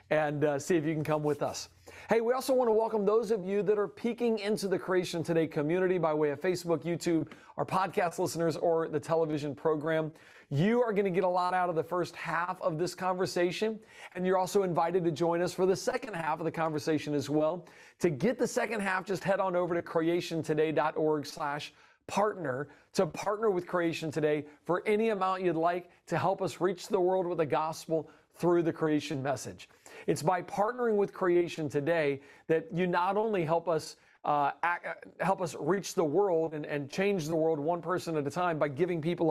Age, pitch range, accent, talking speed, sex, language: 40-59, 155-185 Hz, American, 205 wpm, male, English